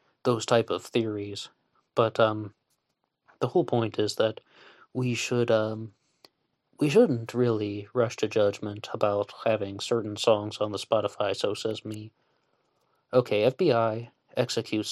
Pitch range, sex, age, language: 105-120 Hz, male, 20-39, English